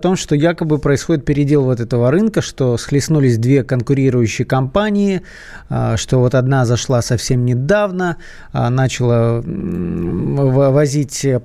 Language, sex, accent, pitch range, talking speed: Russian, male, native, 125-165 Hz, 110 wpm